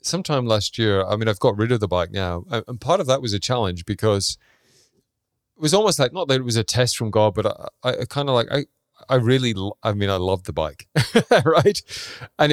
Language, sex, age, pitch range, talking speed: English, male, 30-49, 100-130 Hz, 240 wpm